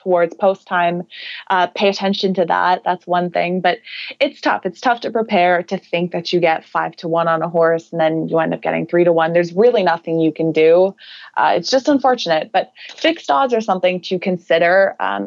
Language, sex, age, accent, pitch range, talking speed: English, female, 20-39, American, 170-195 Hz, 220 wpm